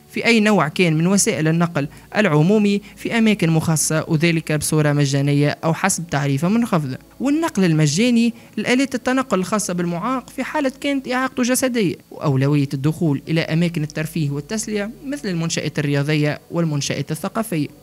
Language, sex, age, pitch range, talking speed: Arabic, male, 20-39, 145-210 Hz, 135 wpm